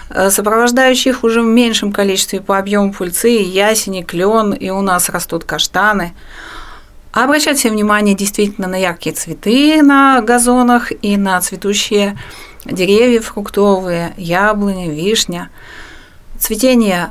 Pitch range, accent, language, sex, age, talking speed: 185-230 Hz, native, Russian, female, 30-49, 110 wpm